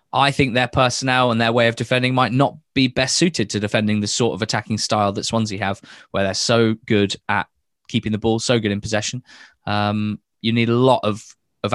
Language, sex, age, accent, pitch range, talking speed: English, male, 20-39, British, 105-135 Hz, 225 wpm